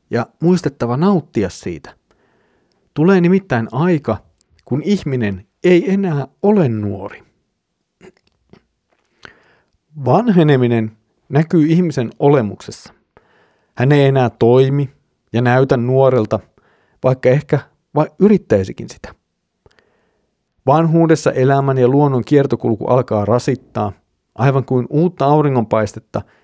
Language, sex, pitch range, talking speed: Finnish, male, 110-140 Hz, 90 wpm